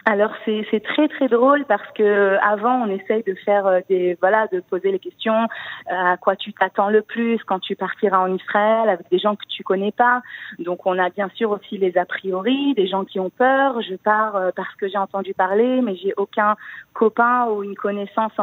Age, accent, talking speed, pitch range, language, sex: 30-49, French, 210 wpm, 190-230 Hz, French, female